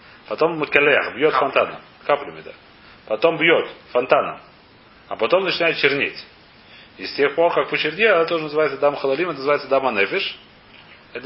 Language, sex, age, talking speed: Russian, male, 30-49, 155 wpm